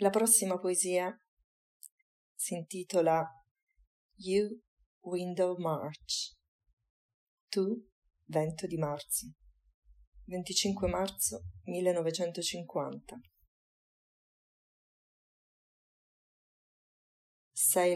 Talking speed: 55 wpm